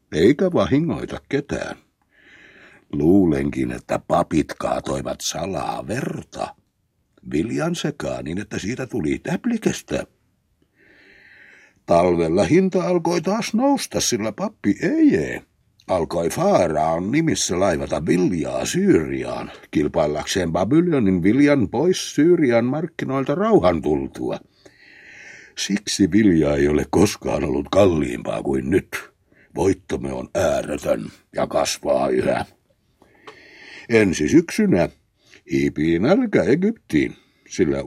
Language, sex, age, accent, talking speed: Finnish, male, 60-79, native, 95 wpm